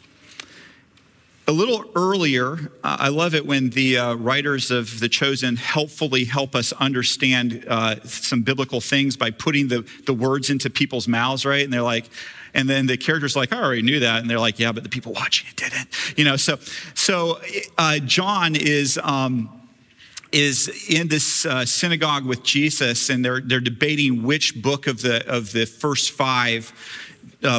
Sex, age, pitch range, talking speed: male, 40-59, 125-150 Hz, 175 wpm